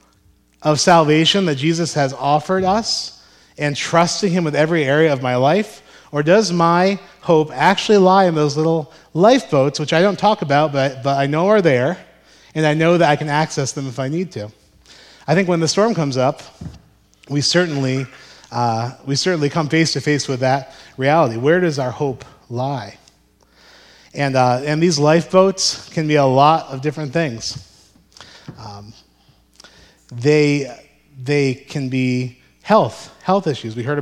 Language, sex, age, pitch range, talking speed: English, male, 30-49, 130-160 Hz, 170 wpm